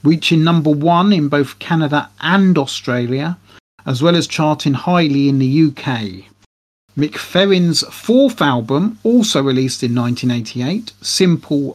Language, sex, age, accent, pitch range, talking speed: English, male, 40-59, British, 130-165 Hz, 125 wpm